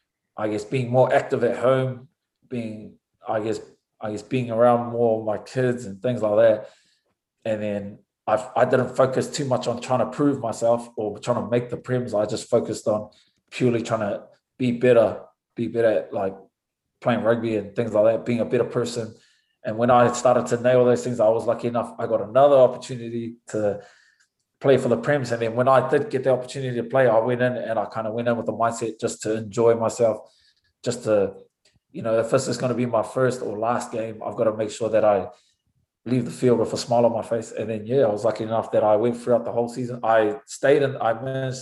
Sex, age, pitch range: male, 20-39, 115-130 Hz